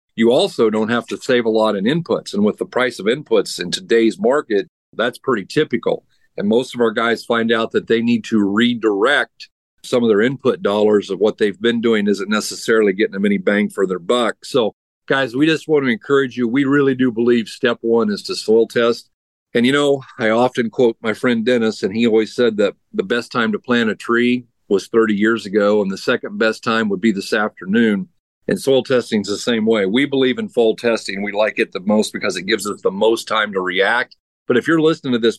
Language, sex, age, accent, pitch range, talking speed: English, male, 50-69, American, 110-135 Hz, 230 wpm